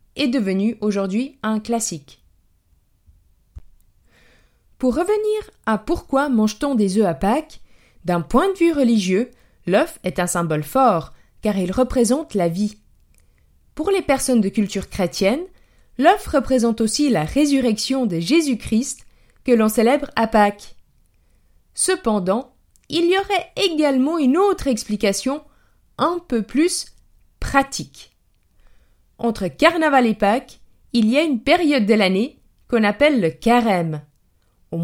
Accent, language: French, French